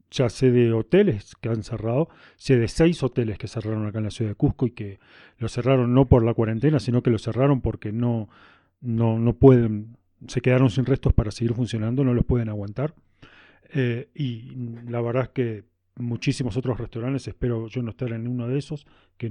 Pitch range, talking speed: 110-135 Hz, 200 wpm